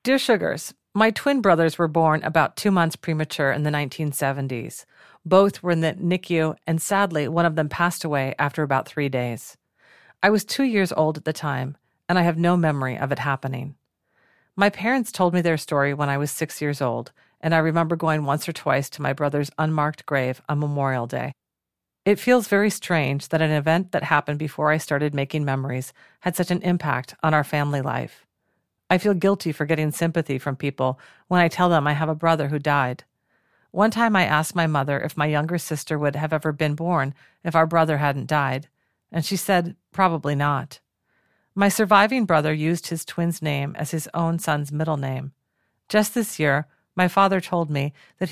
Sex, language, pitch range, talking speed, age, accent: female, English, 145-175 Hz, 195 wpm, 40-59, American